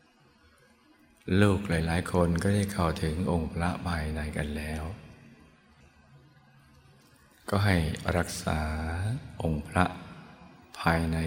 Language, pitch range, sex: Thai, 80-90 Hz, male